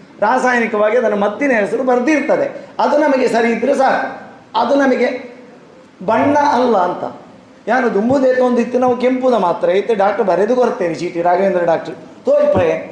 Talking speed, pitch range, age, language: 135 wpm, 200-260 Hz, 30-49, Kannada